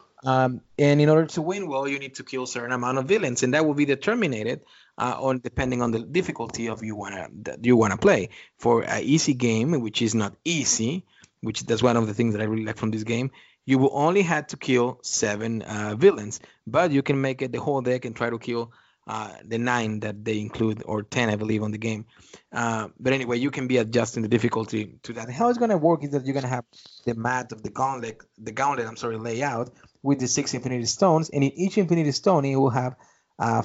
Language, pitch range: English, 115-140 Hz